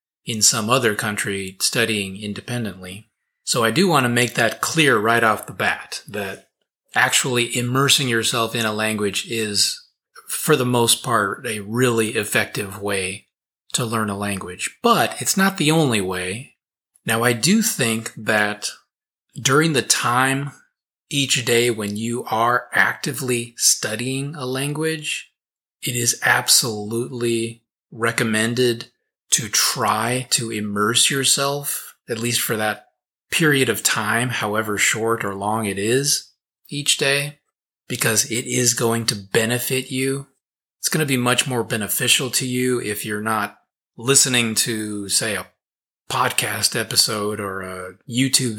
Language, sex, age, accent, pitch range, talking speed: English, male, 30-49, American, 105-125 Hz, 140 wpm